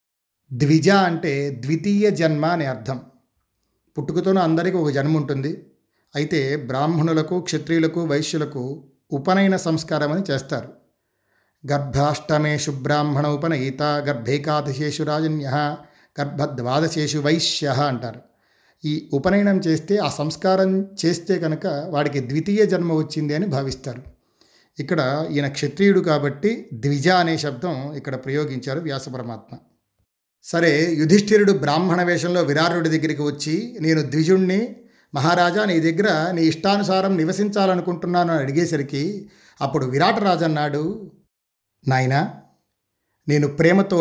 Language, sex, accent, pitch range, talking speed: Telugu, male, native, 140-175 Hz, 90 wpm